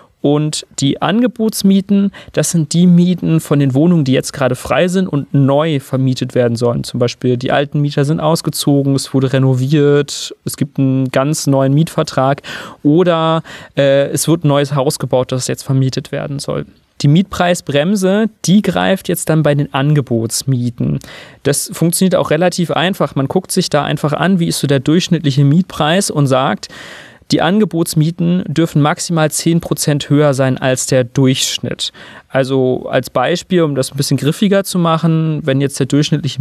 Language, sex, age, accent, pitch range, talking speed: German, male, 30-49, German, 130-165 Hz, 165 wpm